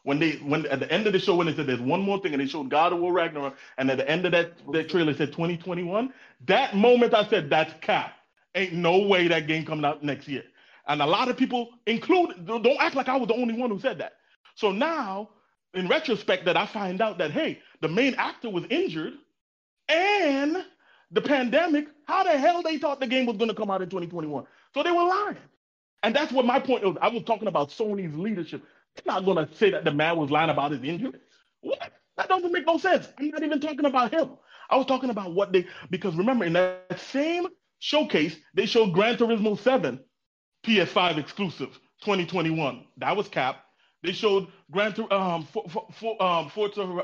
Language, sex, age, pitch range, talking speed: English, male, 30-49, 165-255 Hz, 215 wpm